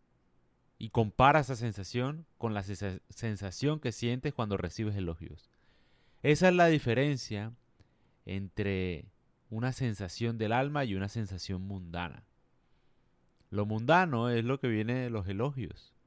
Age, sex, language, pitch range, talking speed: 30-49, male, Spanish, 95-130 Hz, 125 wpm